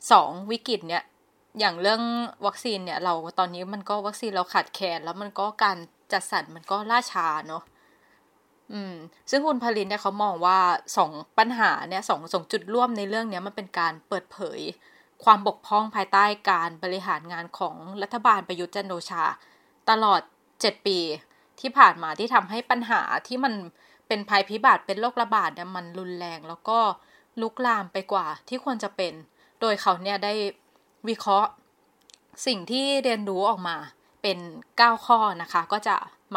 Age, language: 20-39, Thai